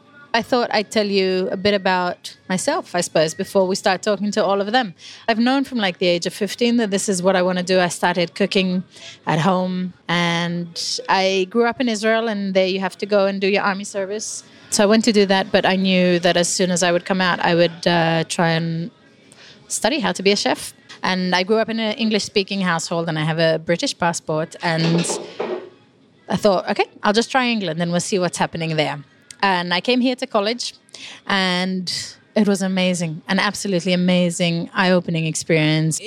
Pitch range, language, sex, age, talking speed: 175-210 Hz, English, female, 20-39, 215 wpm